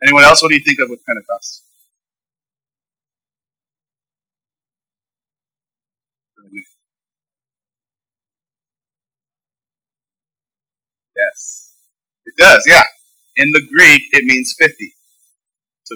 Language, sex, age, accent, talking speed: English, male, 40-59, American, 75 wpm